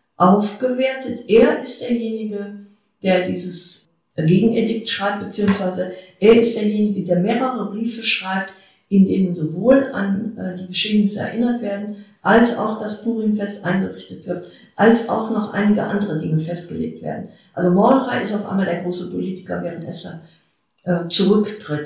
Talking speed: 140 wpm